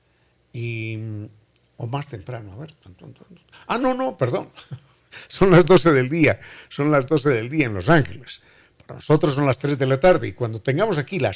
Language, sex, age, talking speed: Spanish, male, 60-79, 200 wpm